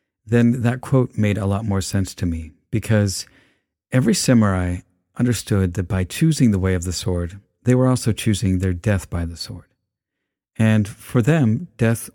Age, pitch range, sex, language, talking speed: 50-69, 95-115 Hz, male, English, 175 wpm